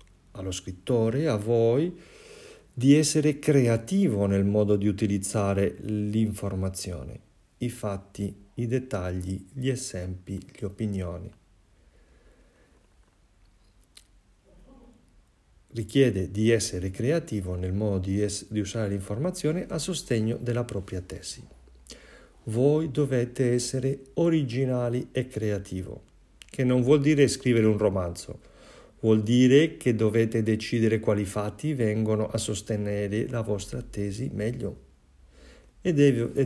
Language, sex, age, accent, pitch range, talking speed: Italian, male, 50-69, native, 100-125 Hz, 105 wpm